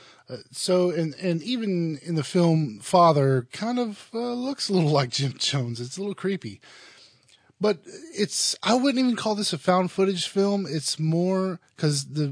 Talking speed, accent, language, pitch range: 170 wpm, American, English, 125-190 Hz